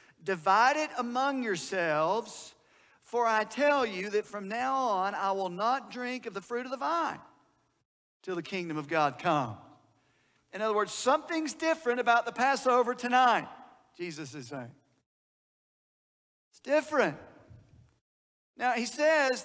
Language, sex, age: English, male, 50-69